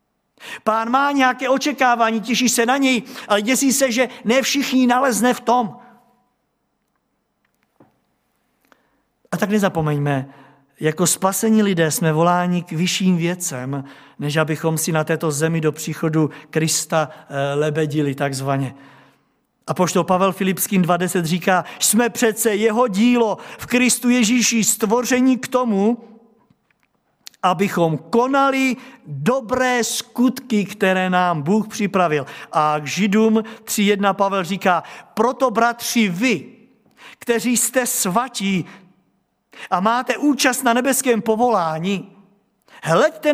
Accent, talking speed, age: native, 115 wpm, 50-69